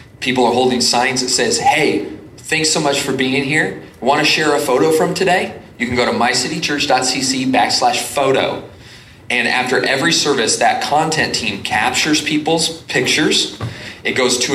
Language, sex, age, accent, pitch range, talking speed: English, male, 30-49, American, 110-140 Hz, 165 wpm